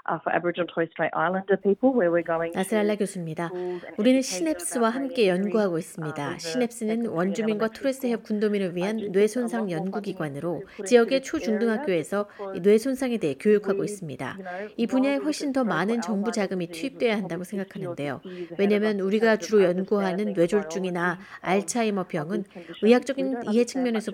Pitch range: 180-230 Hz